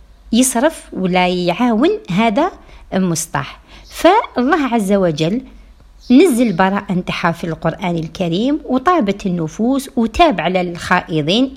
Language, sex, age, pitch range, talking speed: Arabic, female, 50-69, 180-255 Hz, 100 wpm